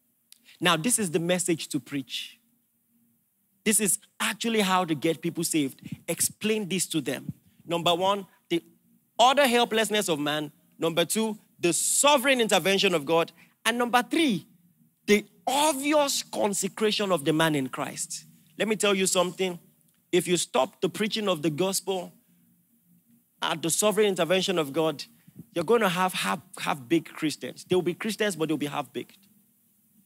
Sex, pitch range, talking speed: male, 160-220 Hz, 155 wpm